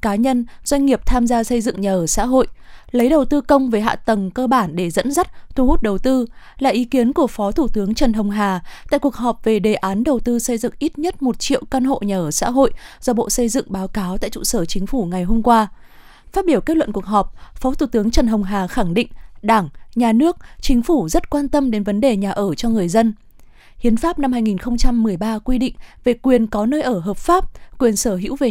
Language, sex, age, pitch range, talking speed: Vietnamese, female, 20-39, 205-265 Hz, 250 wpm